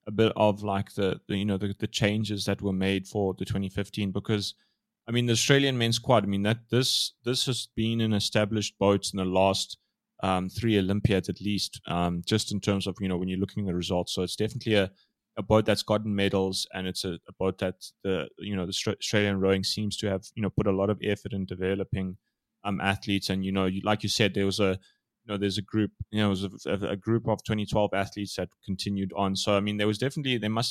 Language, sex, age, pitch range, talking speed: English, male, 20-39, 95-110 Hz, 245 wpm